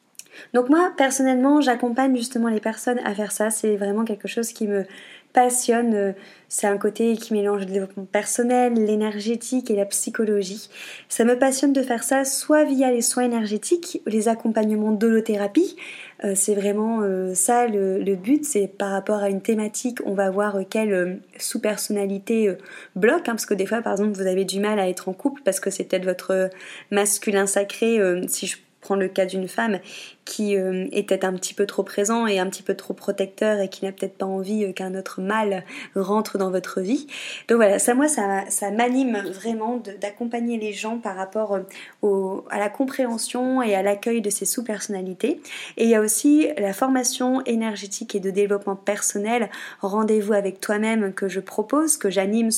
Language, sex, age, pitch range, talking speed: French, female, 20-39, 195-235 Hz, 180 wpm